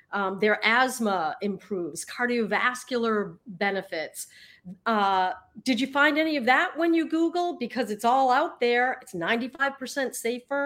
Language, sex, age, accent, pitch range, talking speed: English, female, 40-59, American, 190-250 Hz, 135 wpm